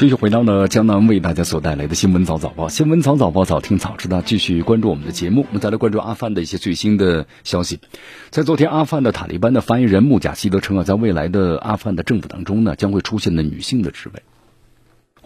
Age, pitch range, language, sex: 50-69, 90-120 Hz, Chinese, male